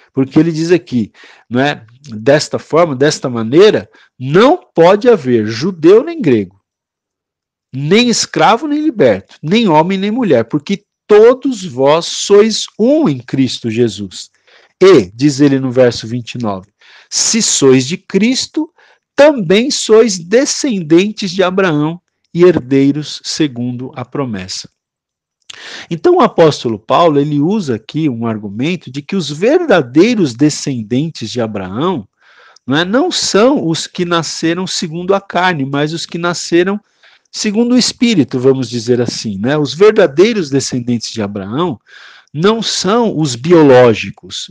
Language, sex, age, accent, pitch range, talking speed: Portuguese, male, 50-69, Brazilian, 130-205 Hz, 130 wpm